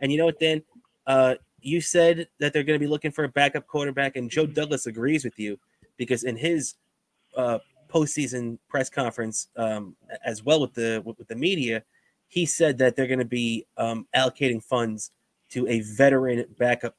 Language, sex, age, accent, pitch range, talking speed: English, male, 20-39, American, 115-140 Hz, 185 wpm